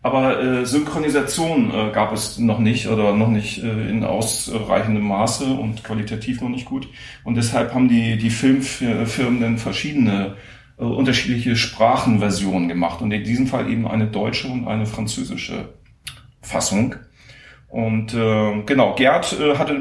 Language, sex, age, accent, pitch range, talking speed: German, male, 40-59, German, 105-125 Hz, 130 wpm